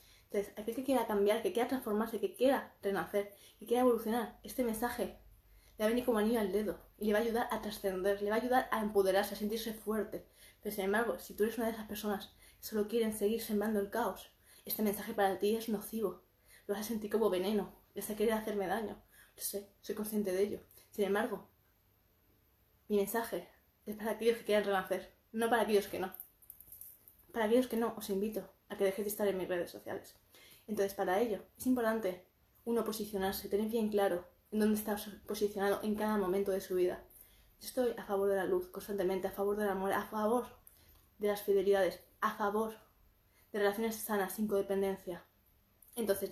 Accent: Spanish